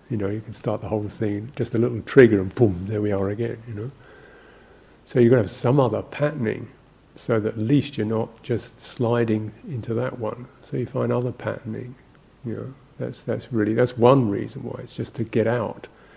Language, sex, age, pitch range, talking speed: English, male, 50-69, 110-130 Hz, 215 wpm